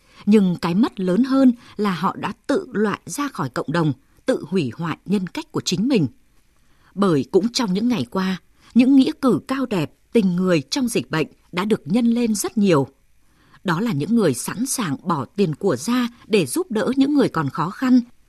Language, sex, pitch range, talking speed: Vietnamese, female, 175-245 Hz, 205 wpm